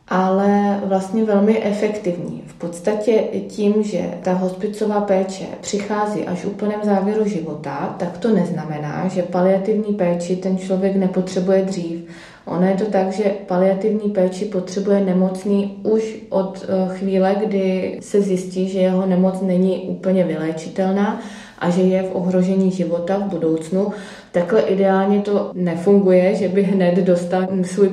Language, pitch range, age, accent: Czech, 185-200 Hz, 20-39, native